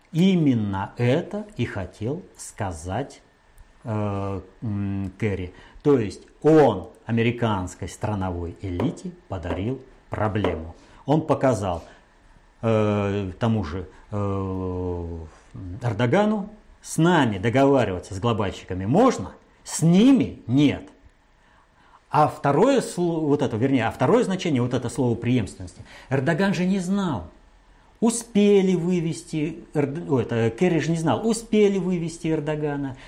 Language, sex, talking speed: Russian, male, 100 wpm